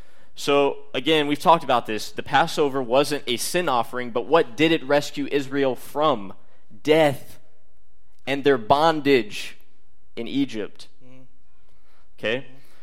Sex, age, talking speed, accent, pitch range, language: male, 20-39, 120 wpm, American, 130-165 Hz, English